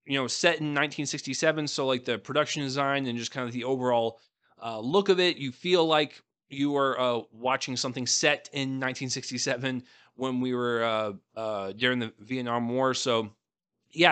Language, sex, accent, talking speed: English, male, American, 180 wpm